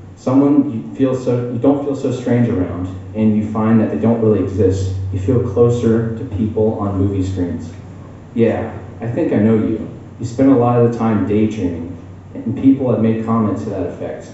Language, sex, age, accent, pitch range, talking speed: English, male, 30-49, American, 95-115 Hz, 195 wpm